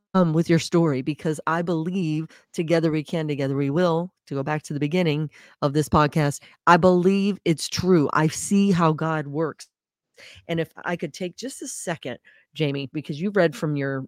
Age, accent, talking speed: 30-49, American, 190 wpm